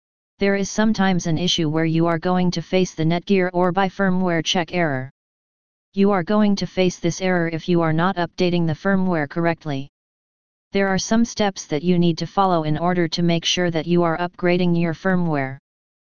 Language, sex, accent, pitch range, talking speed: English, female, American, 165-190 Hz, 200 wpm